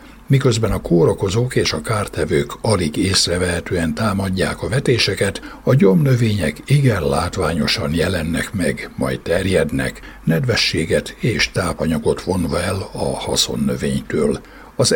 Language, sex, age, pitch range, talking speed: Hungarian, male, 60-79, 90-125 Hz, 110 wpm